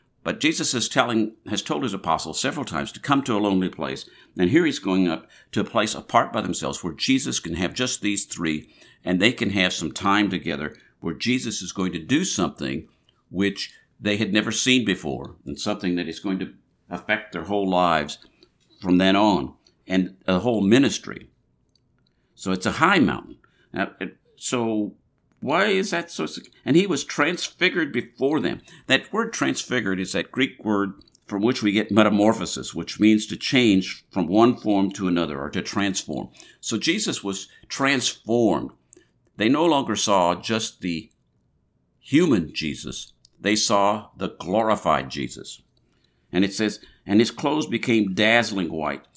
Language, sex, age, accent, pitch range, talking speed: English, male, 60-79, American, 90-110 Hz, 165 wpm